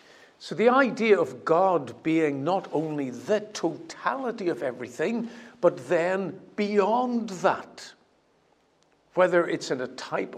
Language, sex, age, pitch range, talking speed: English, male, 60-79, 135-170 Hz, 120 wpm